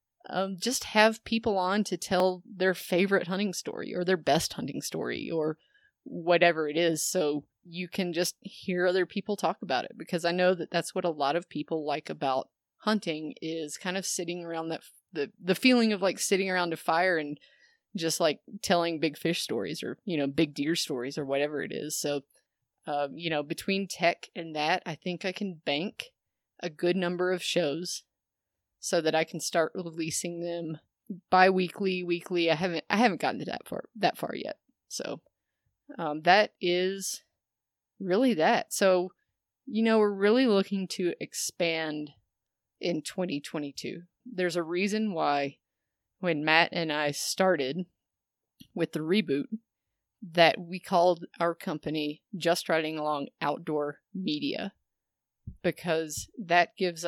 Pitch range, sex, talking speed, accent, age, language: 155-190 Hz, female, 165 wpm, American, 20-39, English